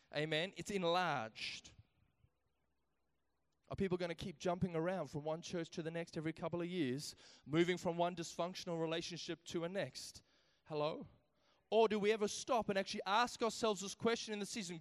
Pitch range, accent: 170-230 Hz, Australian